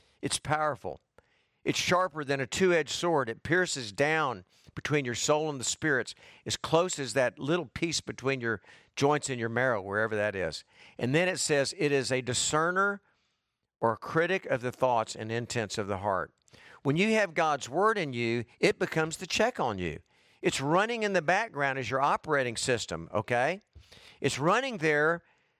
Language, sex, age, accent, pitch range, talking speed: English, male, 50-69, American, 135-190 Hz, 180 wpm